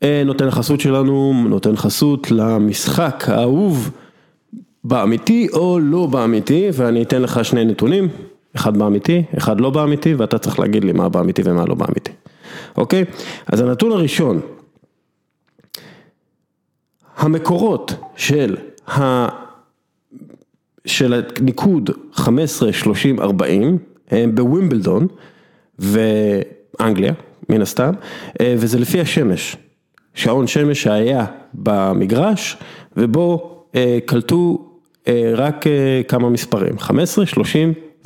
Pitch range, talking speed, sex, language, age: 115-165 Hz, 100 wpm, male, English, 40-59